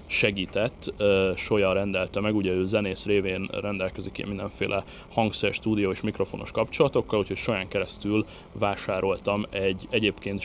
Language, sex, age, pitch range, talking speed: Hungarian, male, 30-49, 95-110 Hz, 125 wpm